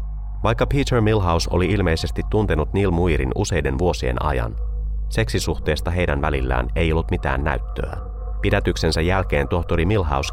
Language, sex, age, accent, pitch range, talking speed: Finnish, male, 30-49, native, 65-95 Hz, 130 wpm